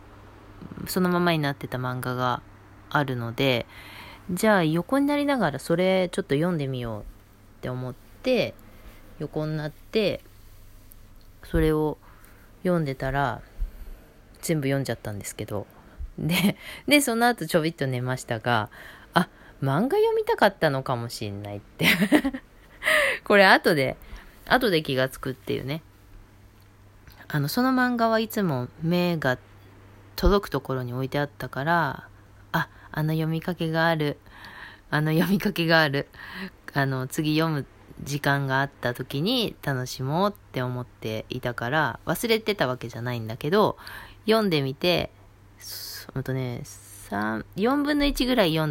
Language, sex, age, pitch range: Japanese, female, 20-39, 105-165 Hz